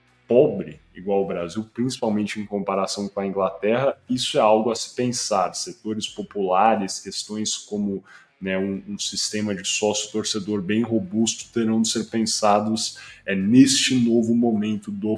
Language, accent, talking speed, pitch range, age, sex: Portuguese, Brazilian, 145 wpm, 100-125 Hz, 10-29, male